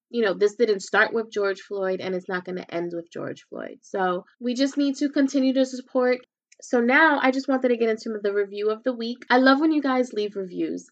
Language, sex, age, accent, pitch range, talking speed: English, female, 20-39, American, 195-255 Hz, 245 wpm